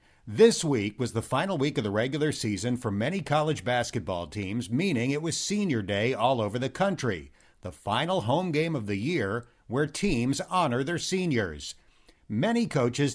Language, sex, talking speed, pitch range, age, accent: English, male, 175 wpm, 110-155 Hz, 50-69, American